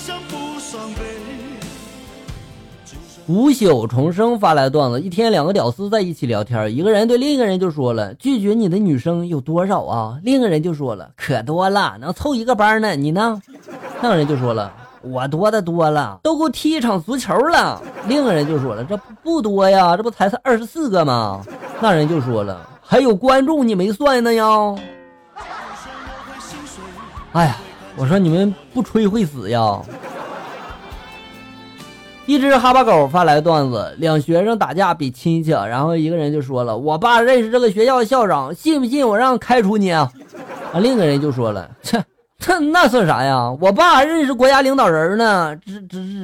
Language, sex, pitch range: Chinese, male, 150-245 Hz